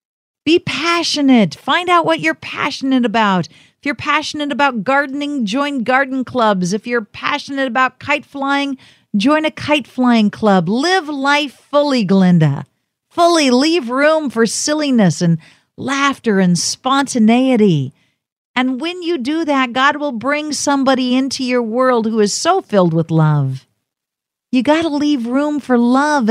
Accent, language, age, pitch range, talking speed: American, English, 50-69, 170-260 Hz, 145 wpm